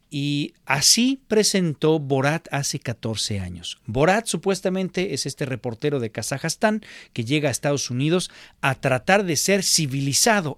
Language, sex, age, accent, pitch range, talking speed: Spanish, male, 50-69, Mexican, 115-175 Hz, 135 wpm